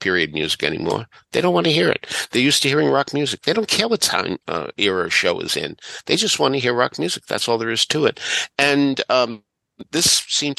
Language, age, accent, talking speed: English, 50-69, American, 240 wpm